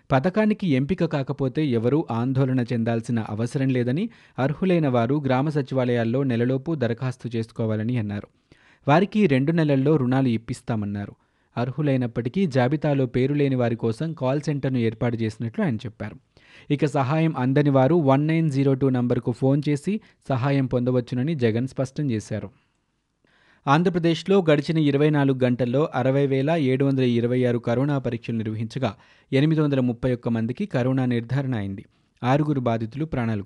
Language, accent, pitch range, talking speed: Telugu, native, 115-145 Hz, 125 wpm